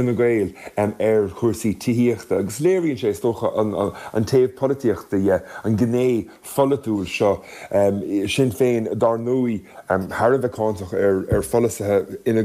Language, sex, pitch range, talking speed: English, male, 100-120 Hz, 135 wpm